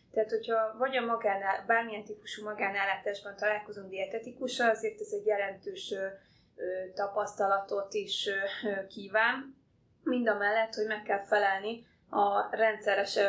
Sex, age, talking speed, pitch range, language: female, 20-39, 115 wpm, 200-230 Hz, Hungarian